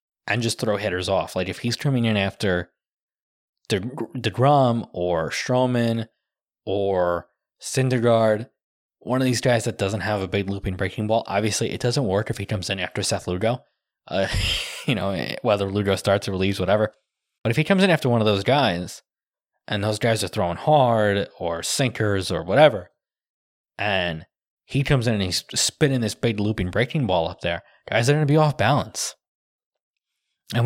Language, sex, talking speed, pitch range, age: English, male, 180 wpm, 95-125 Hz, 20-39